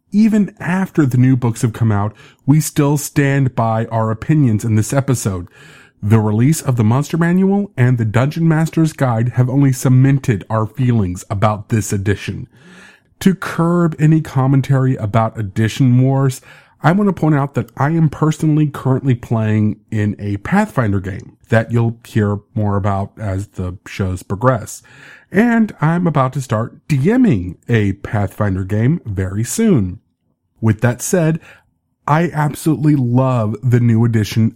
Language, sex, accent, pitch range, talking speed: English, male, American, 110-155 Hz, 150 wpm